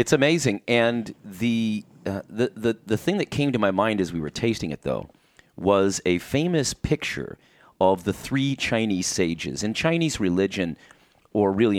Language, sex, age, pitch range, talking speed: English, male, 30-49, 90-120 Hz, 175 wpm